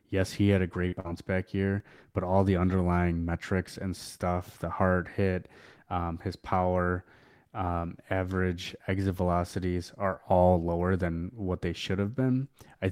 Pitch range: 90-100 Hz